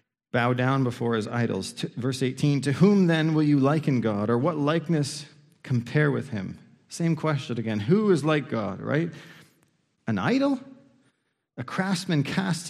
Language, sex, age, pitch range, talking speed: English, male, 40-59, 130-170 Hz, 155 wpm